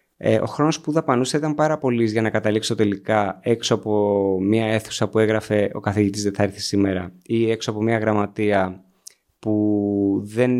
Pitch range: 105-130 Hz